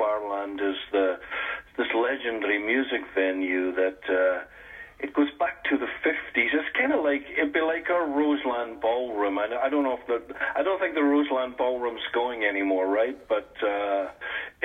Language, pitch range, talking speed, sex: English, 105-135 Hz, 170 wpm, male